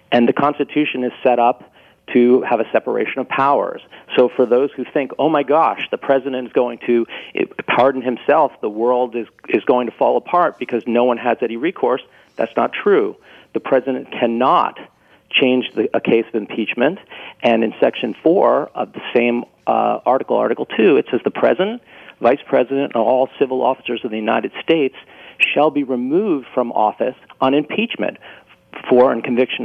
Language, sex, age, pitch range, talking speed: English, male, 40-59, 120-150 Hz, 180 wpm